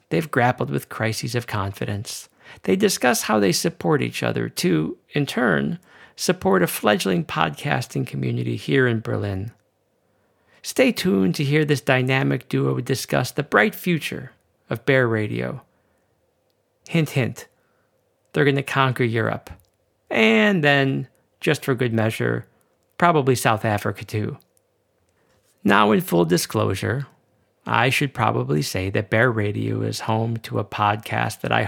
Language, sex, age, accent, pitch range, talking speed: English, male, 50-69, American, 105-135 Hz, 140 wpm